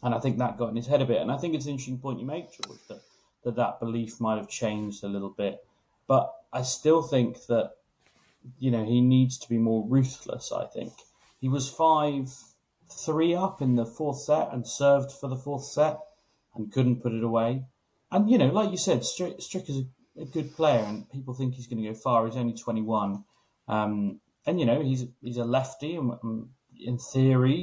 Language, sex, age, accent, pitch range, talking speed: English, male, 30-49, British, 110-135 Hz, 215 wpm